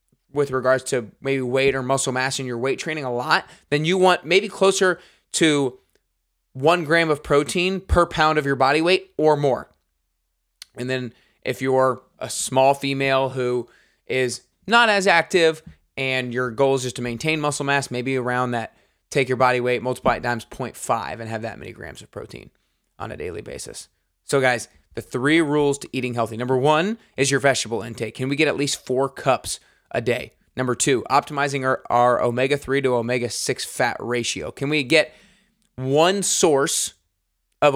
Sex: male